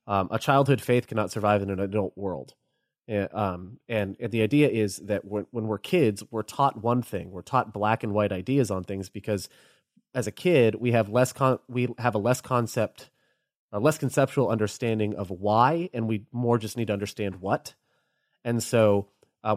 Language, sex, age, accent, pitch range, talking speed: English, male, 30-49, American, 105-125 Hz, 185 wpm